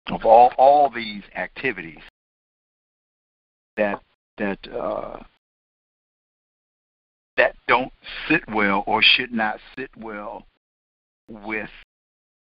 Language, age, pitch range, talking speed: English, 60-79, 95-115 Hz, 85 wpm